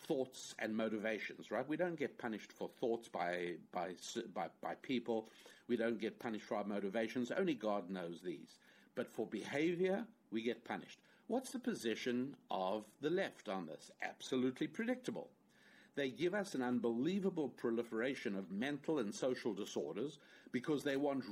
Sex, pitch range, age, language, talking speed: male, 110-145 Hz, 50-69, English, 160 wpm